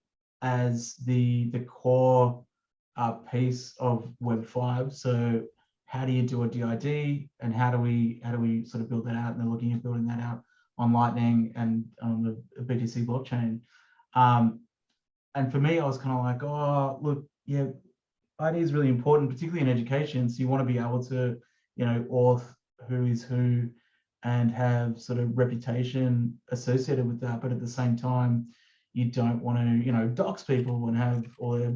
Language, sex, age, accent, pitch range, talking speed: English, male, 30-49, Australian, 120-130 Hz, 185 wpm